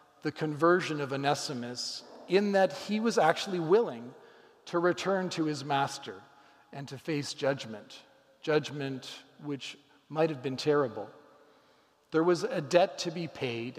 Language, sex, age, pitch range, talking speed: English, male, 40-59, 145-190 Hz, 140 wpm